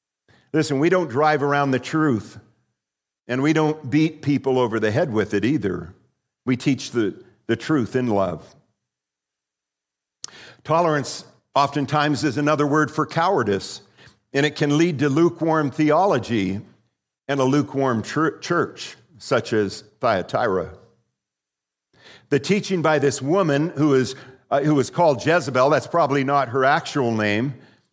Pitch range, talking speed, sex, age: 110-145 Hz, 135 wpm, male, 50-69